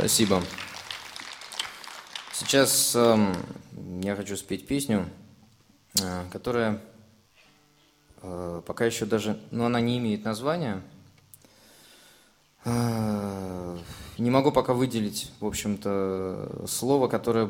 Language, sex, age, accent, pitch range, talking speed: Russian, male, 20-39, native, 100-115 Hz, 95 wpm